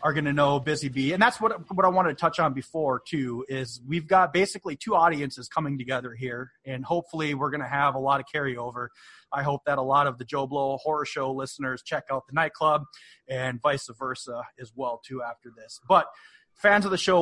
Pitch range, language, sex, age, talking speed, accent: 130-160 Hz, English, male, 30-49, 220 wpm, American